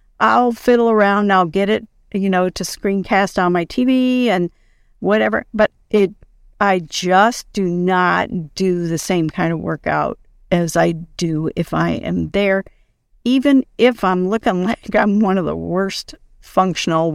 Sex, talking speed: female, 160 wpm